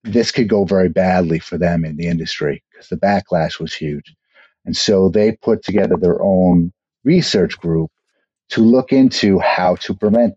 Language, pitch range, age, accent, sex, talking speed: English, 85-100 Hz, 50-69, American, male, 175 wpm